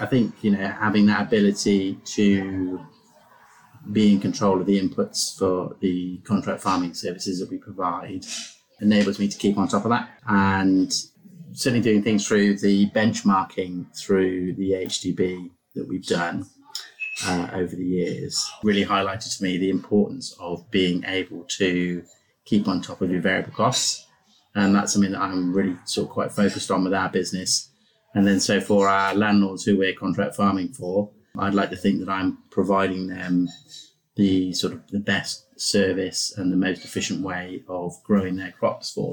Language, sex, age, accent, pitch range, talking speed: English, male, 30-49, British, 95-105 Hz, 175 wpm